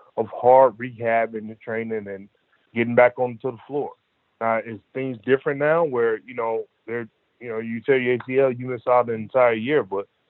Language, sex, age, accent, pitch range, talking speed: English, male, 30-49, American, 115-135 Hz, 200 wpm